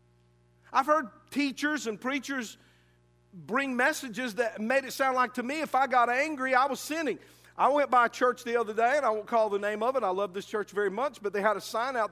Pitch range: 190-270 Hz